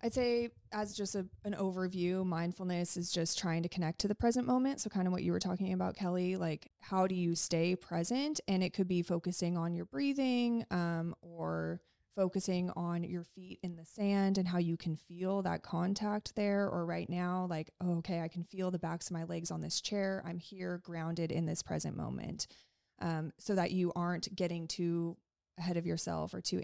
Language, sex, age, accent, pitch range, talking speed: English, female, 20-39, American, 170-200 Hz, 205 wpm